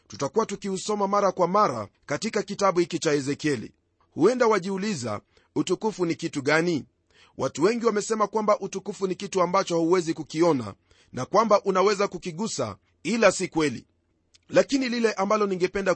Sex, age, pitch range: male, 40-59, 165-215 Hz